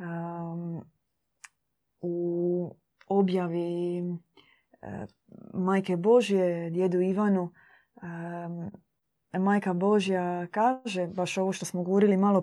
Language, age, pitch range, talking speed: Croatian, 20-39, 170-205 Hz, 70 wpm